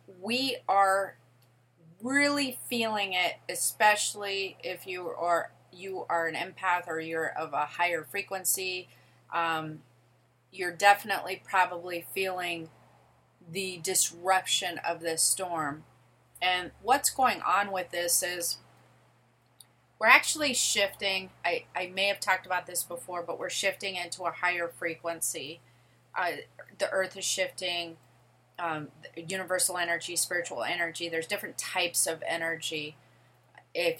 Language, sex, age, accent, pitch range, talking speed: English, female, 30-49, American, 160-190 Hz, 125 wpm